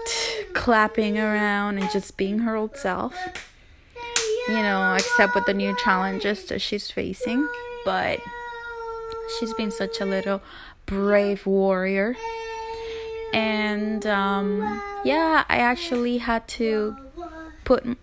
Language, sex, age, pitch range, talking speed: English, female, 20-39, 205-250 Hz, 115 wpm